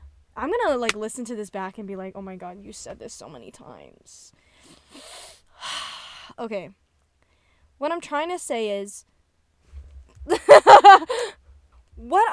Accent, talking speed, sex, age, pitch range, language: American, 135 wpm, female, 10-29, 200-295 Hz, English